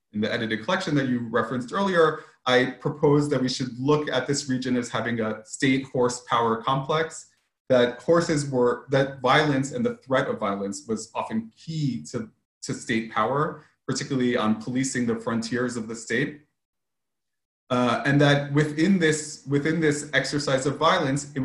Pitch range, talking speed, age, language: 125-150 Hz, 170 wpm, 30-49, English